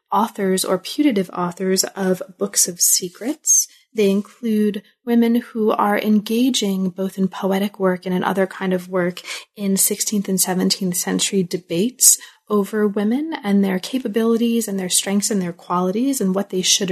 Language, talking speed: English, 160 wpm